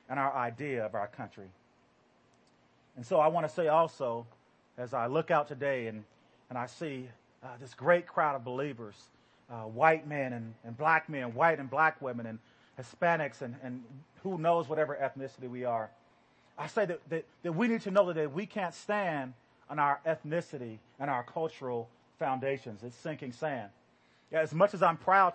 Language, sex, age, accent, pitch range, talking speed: English, male, 30-49, American, 125-165 Hz, 180 wpm